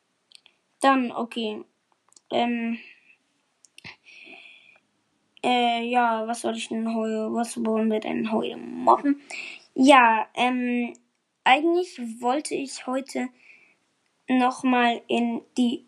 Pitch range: 235-325 Hz